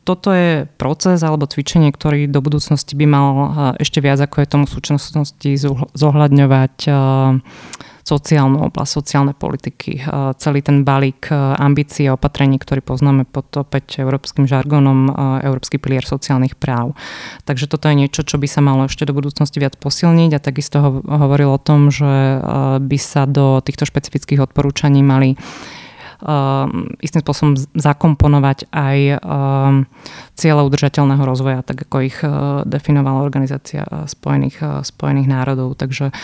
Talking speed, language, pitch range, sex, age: 140 wpm, Slovak, 135-145 Hz, female, 30-49